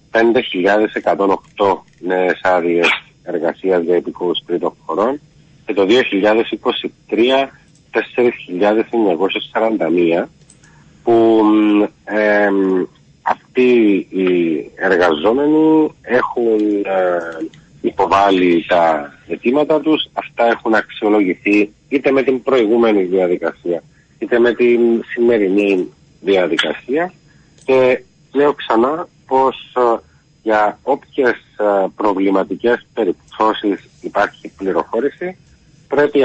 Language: Greek